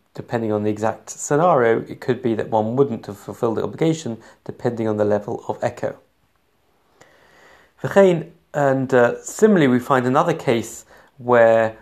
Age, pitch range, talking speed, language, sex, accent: 30-49, 115-155 Hz, 140 wpm, English, male, British